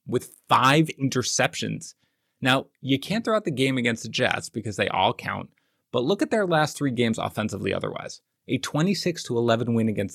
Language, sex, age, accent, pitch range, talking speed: English, male, 30-49, American, 110-150 Hz, 185 wpm